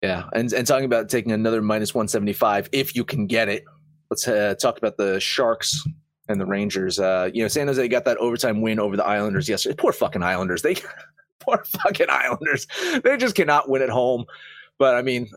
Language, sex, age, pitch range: English, male, 30-49, 105-145 Hz